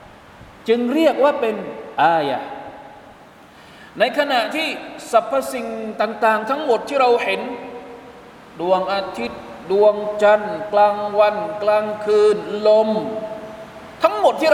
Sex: male